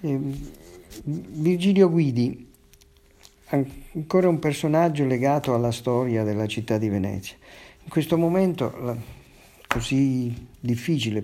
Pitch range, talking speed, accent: 105-130 Hz, 90 wpm, native